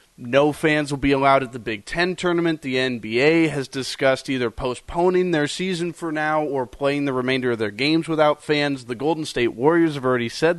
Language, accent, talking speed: English, American, 205 wpm